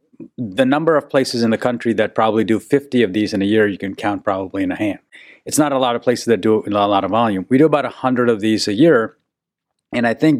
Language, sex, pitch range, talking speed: English, male, 110-135 Hz, 265 wpm